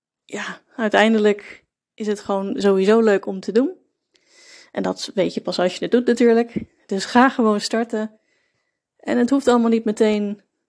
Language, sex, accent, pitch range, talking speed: Dutch, female, Dutch, 200-235 Hz, 170 wpm